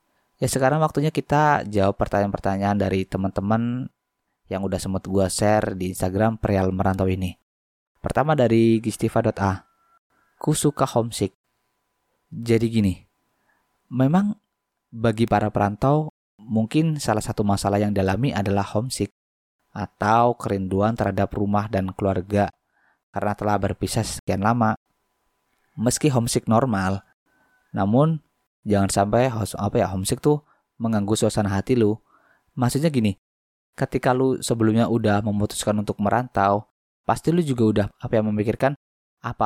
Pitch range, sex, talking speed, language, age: 100-120 Hz, male, 120 wpm, Malay, 20-39